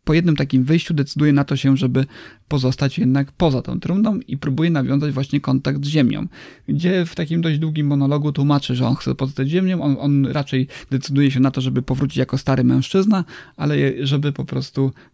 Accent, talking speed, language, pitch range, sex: Polish, 195 wpm, English, 130-145 Hz, male